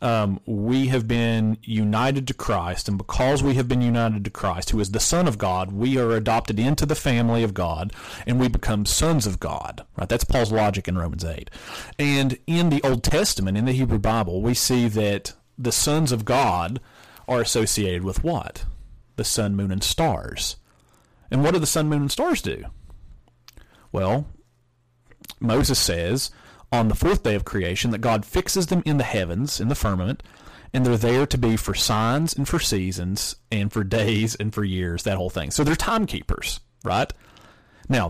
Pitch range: 100-130 Hz